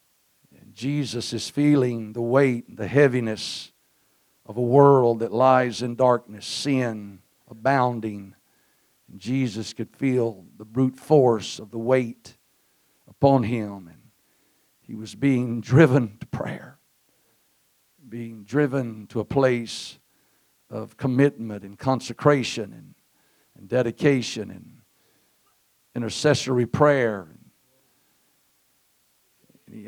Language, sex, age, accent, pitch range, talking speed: English, male, 60-79, American, 105-125 Hz, 100 wpm